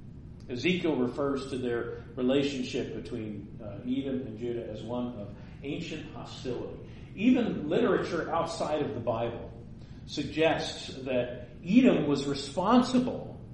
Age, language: 40-59, English